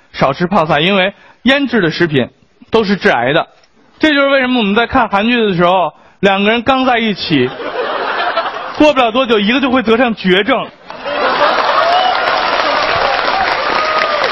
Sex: male